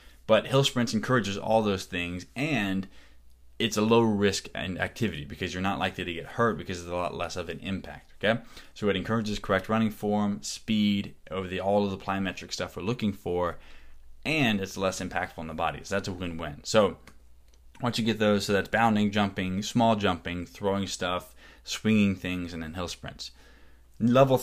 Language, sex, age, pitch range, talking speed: English, male, 20-39, 90-110 Hz, 185 wpm